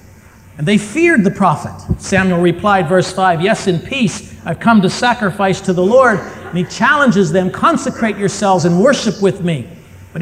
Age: 50-69